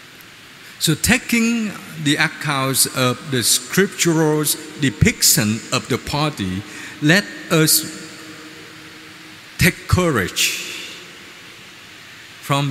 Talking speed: 75 wpm